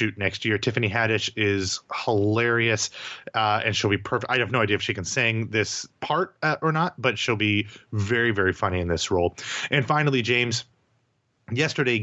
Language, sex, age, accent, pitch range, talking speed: English, male, 30-49, American, 110-130 Hz, 185 wpm